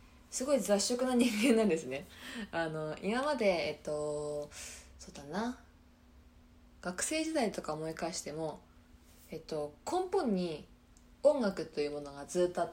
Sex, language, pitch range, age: female, Japanese, 150-240 Hz, 20-39